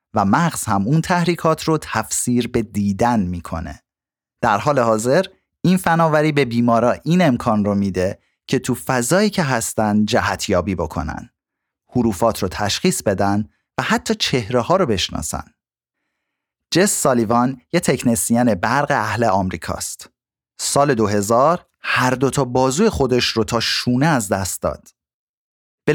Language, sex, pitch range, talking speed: Persian, male, 100-145 Hz, 135 wpm